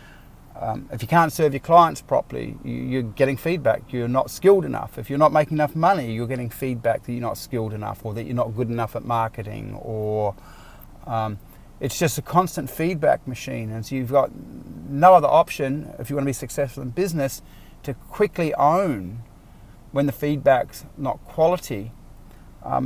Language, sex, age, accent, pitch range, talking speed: English, male, 30-49, Australian, 115-145 Hz, 180 wpm